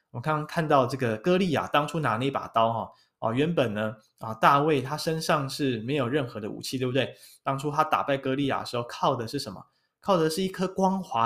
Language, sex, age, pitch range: Chinese, male, 20-39, 120-160 Hz